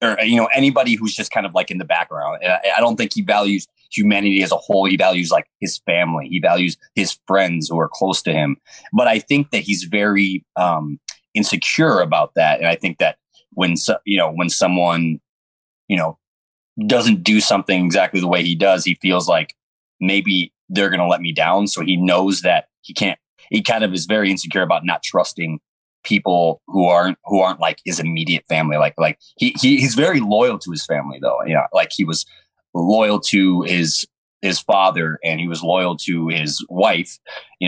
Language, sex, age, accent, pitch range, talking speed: English, male, 20-39, American, 85-110 Hz, 200 wpm